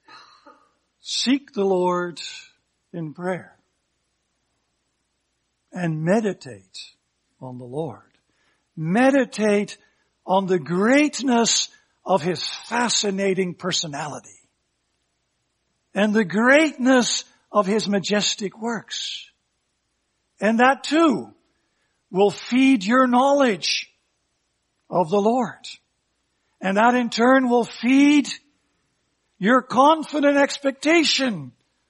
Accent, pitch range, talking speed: American, 180-255 Hz, 85 wpm